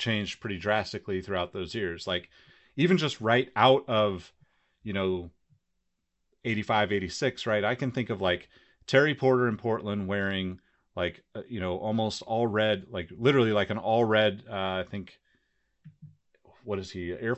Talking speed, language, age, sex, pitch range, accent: 160 wpm, English, 30-49, male, 95-125 Hz, American